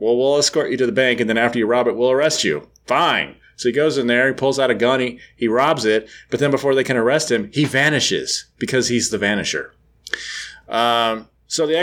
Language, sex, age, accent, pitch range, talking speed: English, male, 30-49, American, 110-140 Hz, 240 wpm